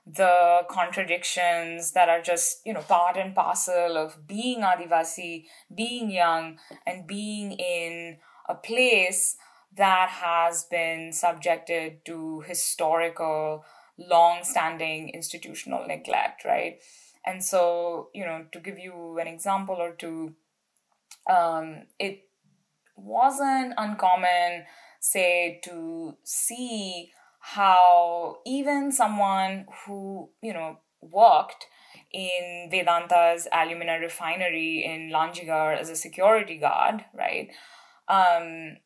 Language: English